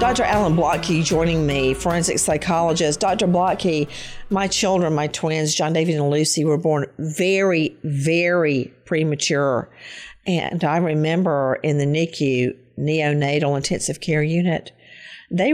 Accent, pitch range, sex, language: American, 155-190 Hz, female, English